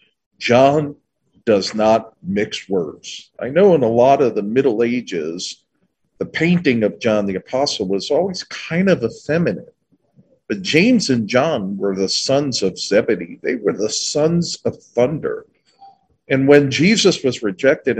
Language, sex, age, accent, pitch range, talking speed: English, male, 50-69, American, 115-175 Hz, 150 wpm